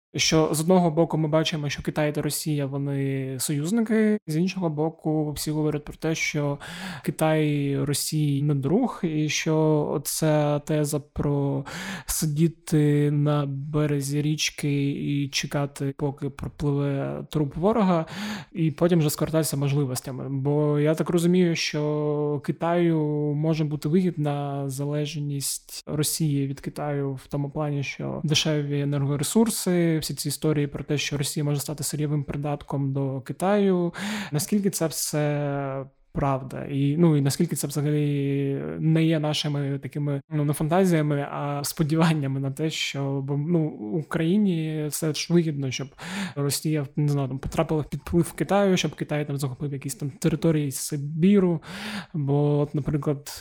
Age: 20-39